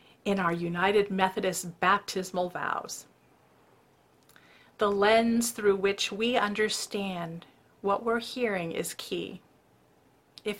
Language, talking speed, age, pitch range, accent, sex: English, 100 wpm, 50-69, 190-240 Hz, American, female